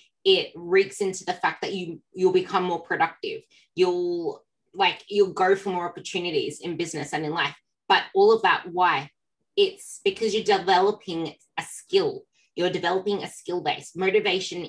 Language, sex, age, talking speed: English, female, 20-39, 165 wpm